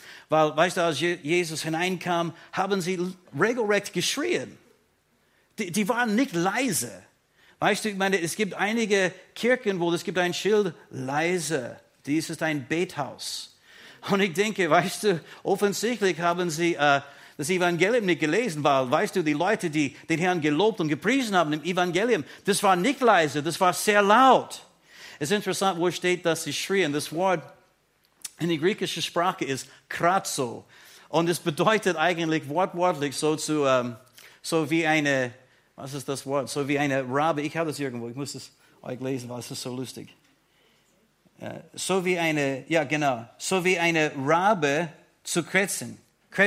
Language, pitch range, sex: German, 155-200 Hz, male